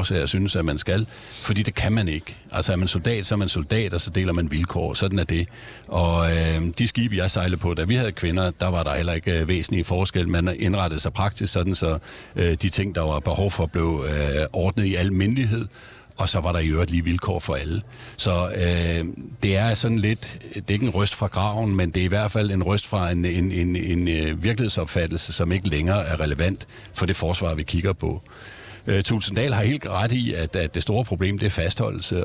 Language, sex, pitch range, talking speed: Danish, male, 85-110 Hz, 230 wpm